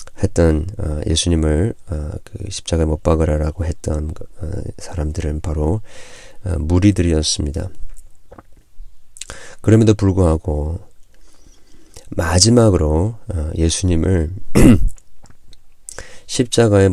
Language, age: Korean, 40-59